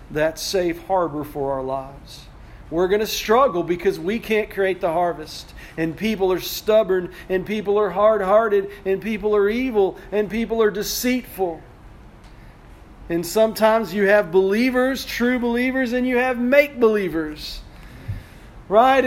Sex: male